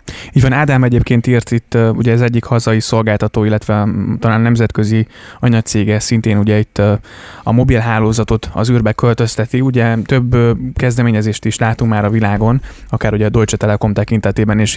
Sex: male